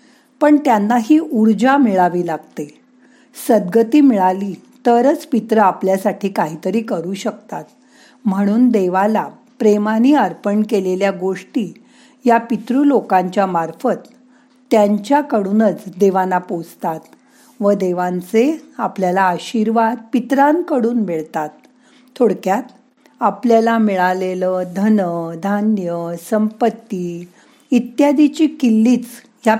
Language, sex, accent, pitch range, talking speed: Marathi, female, native, 190-250 Hz, 85 wpm